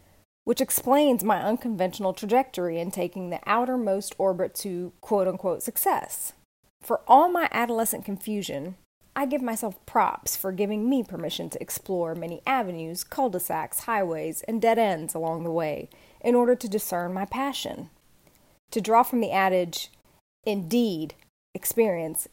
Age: 30-49